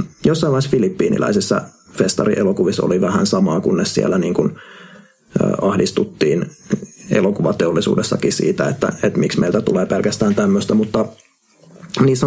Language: Finnish